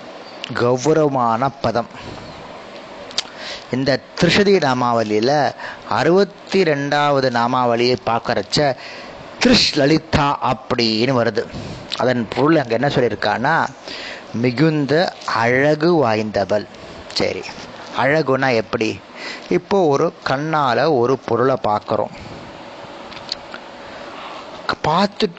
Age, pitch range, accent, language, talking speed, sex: 30-49, 120-155 Hz, native, Tamil, 70 wpm, male